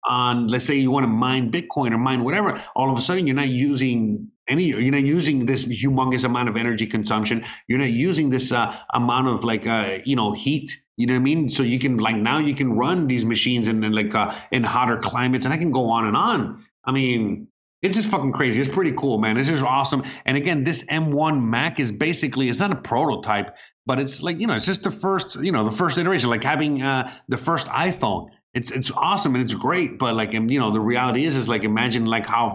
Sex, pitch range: male, 115-145 Hz